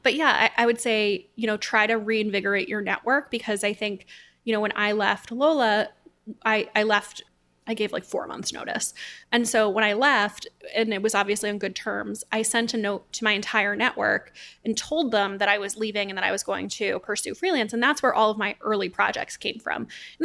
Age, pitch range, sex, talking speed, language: 20-39, 205-235 Hz, female, 230 wpm, English